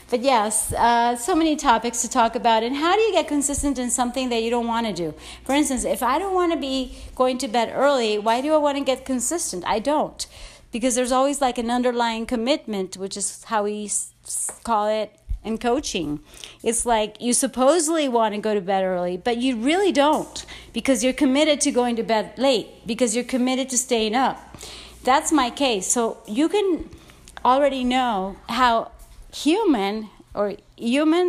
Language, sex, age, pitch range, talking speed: English, female, 40-59, 225-285 Hz, 190 wpm